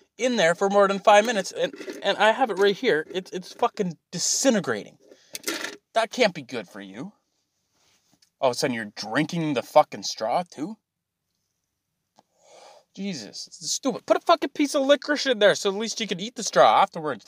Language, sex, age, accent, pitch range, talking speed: English, male, 20-39, American, 145-220 Hz, 180 wpm